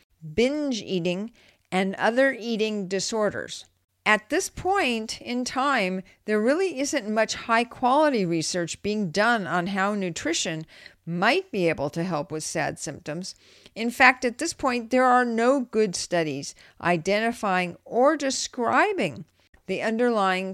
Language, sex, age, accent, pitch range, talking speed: English, female, 50-69, American, 185-250 Hz, 135 wpm